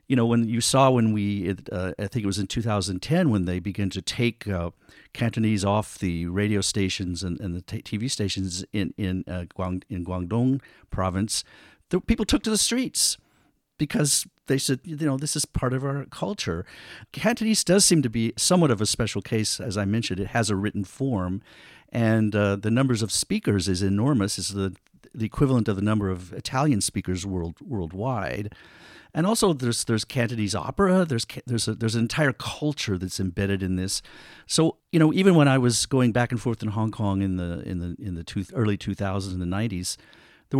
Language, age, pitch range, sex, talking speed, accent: English, 50-69, 95-125 Hz, male, 200 wpm, American